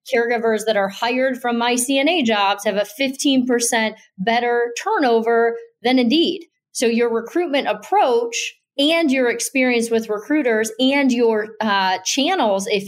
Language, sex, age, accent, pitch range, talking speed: English, female, 40-59, American, 200-255 Hz, 135 wpm